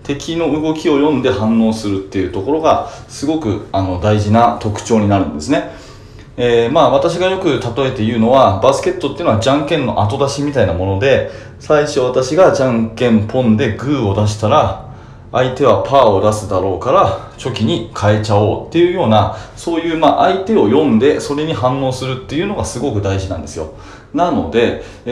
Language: Japanese